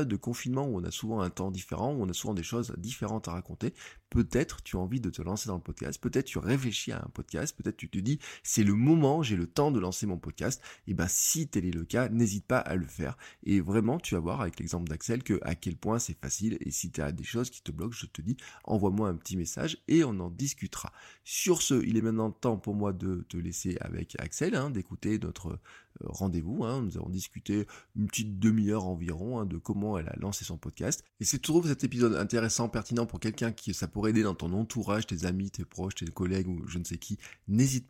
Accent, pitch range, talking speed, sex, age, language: French, 90-115 Hz, 245 wpm, male, 20-39, French